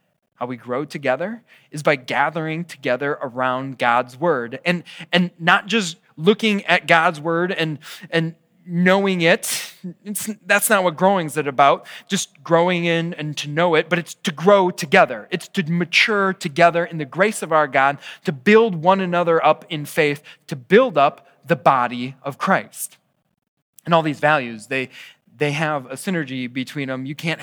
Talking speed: 175 wpm